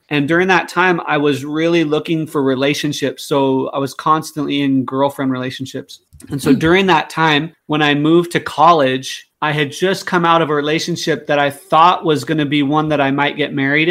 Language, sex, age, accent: English, male, 30-49, American